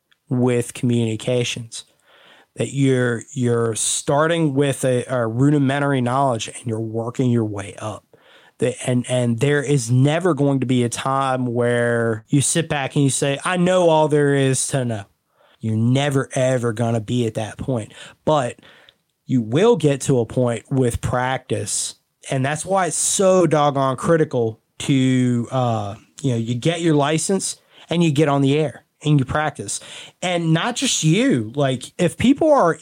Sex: male